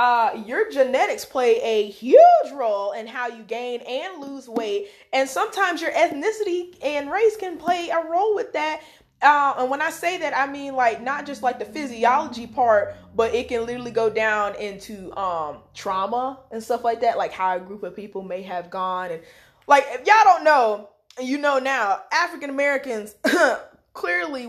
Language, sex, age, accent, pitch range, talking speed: English, female, 20-39, American, 215-290 Hz, 180 wpm